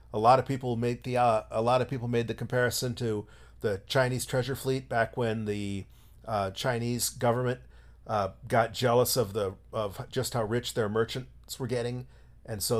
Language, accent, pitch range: English, American, 110-135 Hz